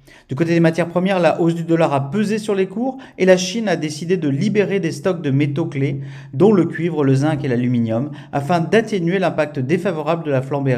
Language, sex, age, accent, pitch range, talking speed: French, male, 40-59, French, 135-175 Hz, 225 wpm